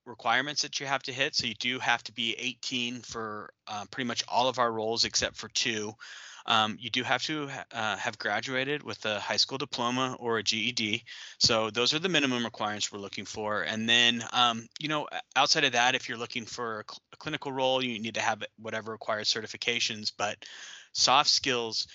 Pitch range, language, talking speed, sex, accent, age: 105-125 Hz, English, 210 wpm, male, American, 30-49